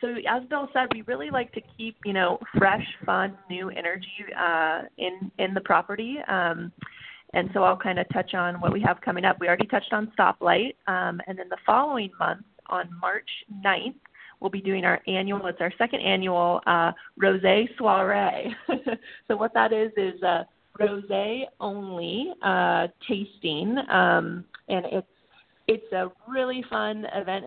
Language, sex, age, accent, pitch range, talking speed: English, female, 30-49, American, 175-220 Hz, 170 wpm